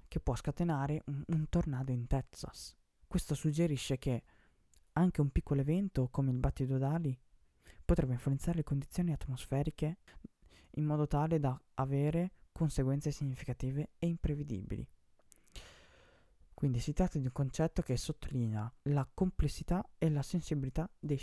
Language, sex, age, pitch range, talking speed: Italian, female, 20-39, 125-160 Hz, 125 wpm